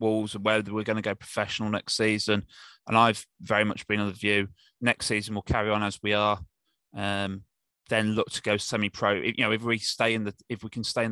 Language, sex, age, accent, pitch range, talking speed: English, male, 20-39, British, 100-110 Hz, 245 wpm